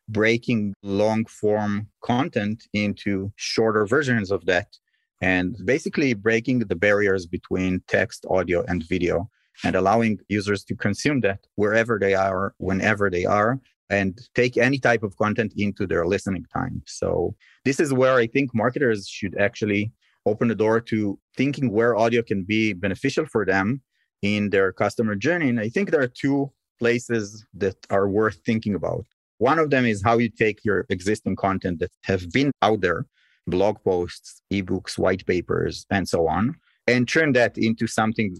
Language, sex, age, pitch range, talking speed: English, male, 30-49, 100-120 Hz, 165 wpm